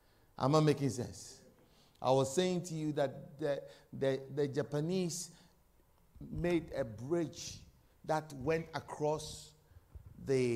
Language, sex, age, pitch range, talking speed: English, male, 50-69, 135-220 Hz, 120 wpm